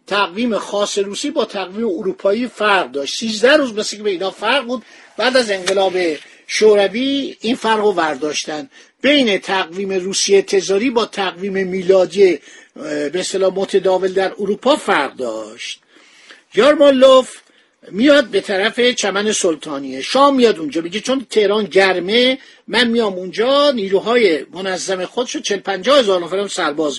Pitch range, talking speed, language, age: 185-240 Hz, 135 wpm, Persian, 50-69